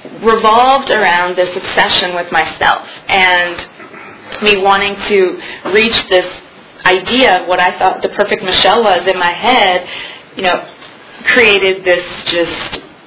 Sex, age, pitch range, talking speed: female, 20-39, 170-200 Hz, 135 wpm